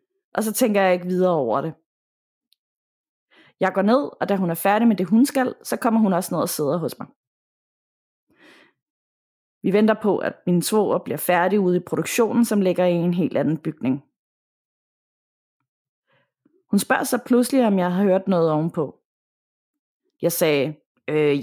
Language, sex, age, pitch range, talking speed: Danish, female, 30-49, 170-235 Hz, 170 wpm